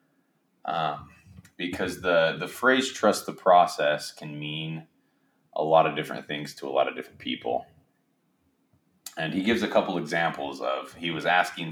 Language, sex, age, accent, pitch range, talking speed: English, male, 20-39, American, 75-95 Hz, 160 wpm